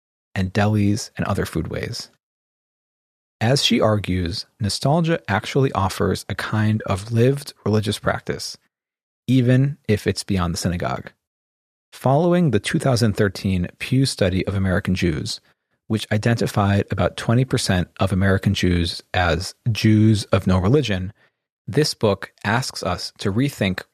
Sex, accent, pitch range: male, American, 95-120 Hz